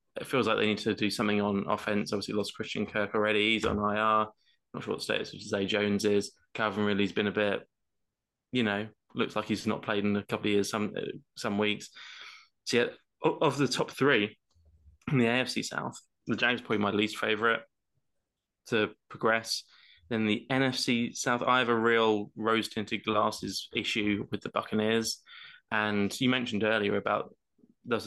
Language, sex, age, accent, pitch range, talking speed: English, male, 20-39, British, 100-110 Hz, 180 wpm